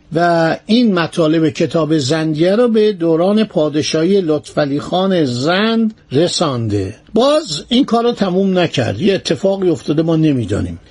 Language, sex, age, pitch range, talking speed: Persian, male, 50-69, 155-210 Hz, 130 wpm